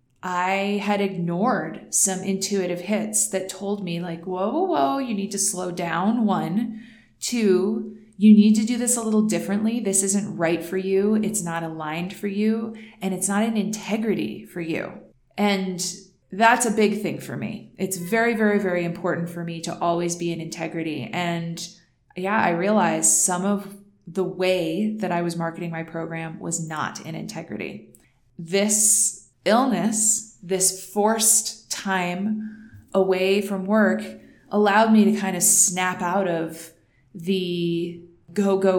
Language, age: English, 20-39